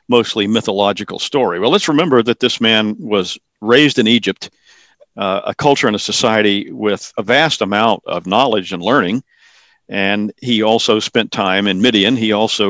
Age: 50-69